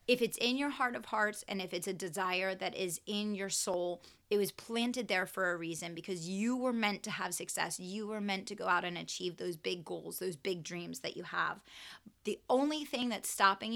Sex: female